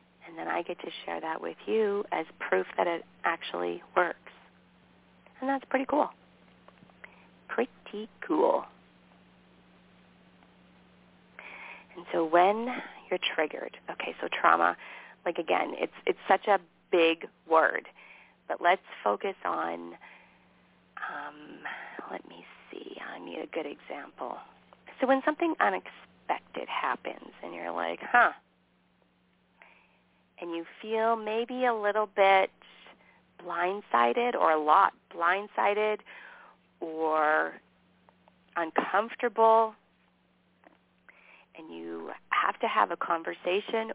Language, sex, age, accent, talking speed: English, female, 40-59, American, 110 wpm